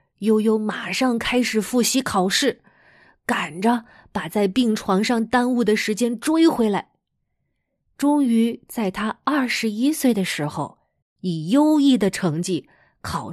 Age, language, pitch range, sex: 20-39, Chinese, 185-250 Hz, female